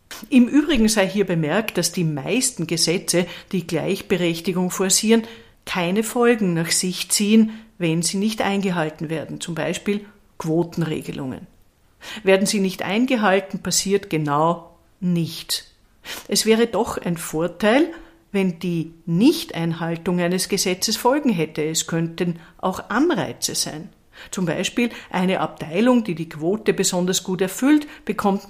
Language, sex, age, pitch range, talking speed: German, female, 50-69, 165-205 Hz, 125 wpm